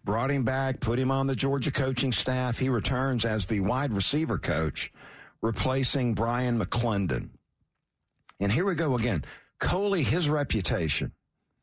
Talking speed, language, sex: 145 wpm, English, male